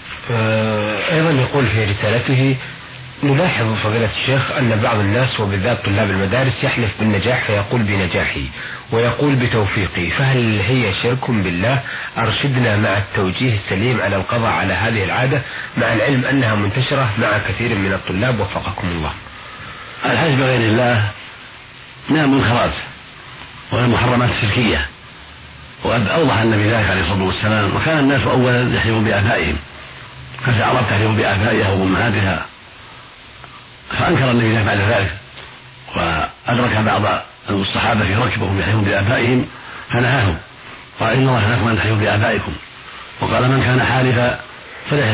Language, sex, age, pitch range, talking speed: Arabic, male, 40-59, 105-125 Hz, 120 wpm